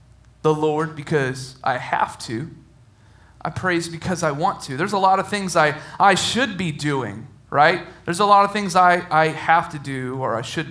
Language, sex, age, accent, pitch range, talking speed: English, male, 30-49, American, 120-155 Hz, 200 wpm